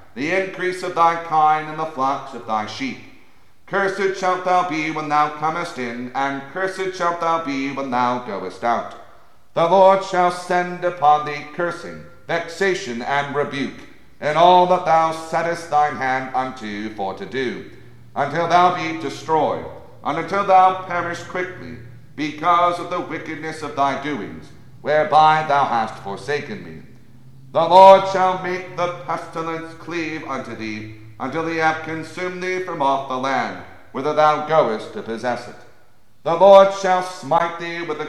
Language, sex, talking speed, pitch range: English, male, 160 wpm, 130-175 Hz